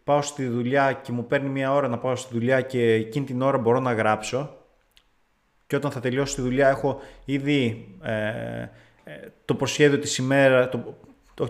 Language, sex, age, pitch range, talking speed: Greek, male, 30-49, 125-155 Hz, 165 wpm